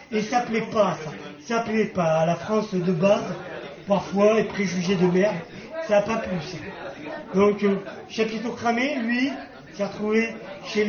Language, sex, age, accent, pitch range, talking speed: French, male, 40-59, French, 195-245 Hz, 170 wpm